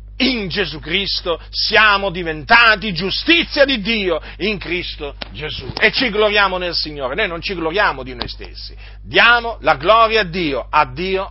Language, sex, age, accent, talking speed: Italian, male, 40-59, native, 160 wpm